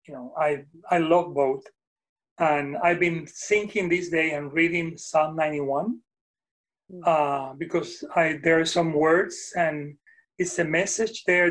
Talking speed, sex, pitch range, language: 150 wpm, male, 155-195 Hz, English